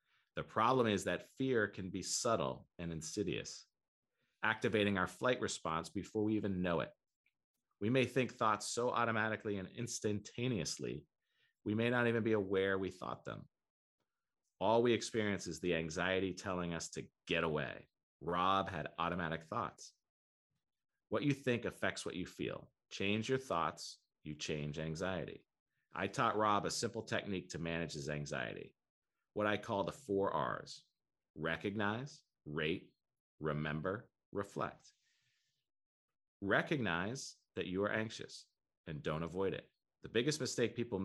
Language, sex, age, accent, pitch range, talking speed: English, male, 40-59, American, 85-110 Hz, 140 wpm